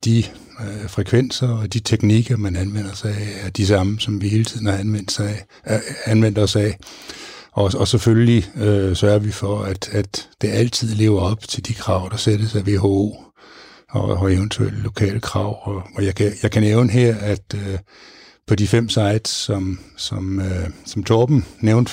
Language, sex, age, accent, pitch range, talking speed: Danish, male, 60-79, native, 100-110 Hz, 185 wpm